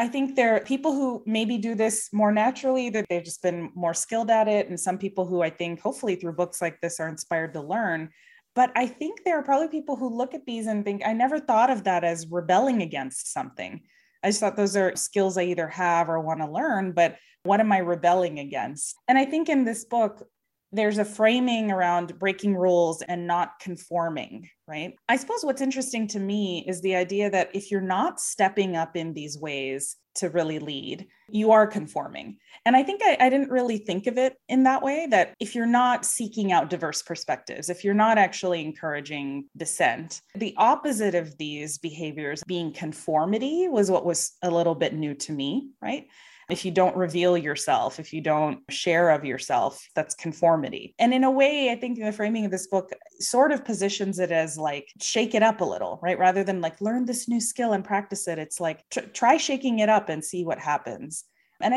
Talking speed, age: 210 wpm, 20-39